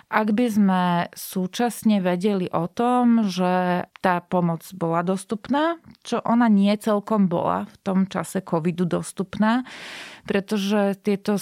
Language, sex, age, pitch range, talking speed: Slovak, female, 30-49, 180-210 Hz, 125 wpm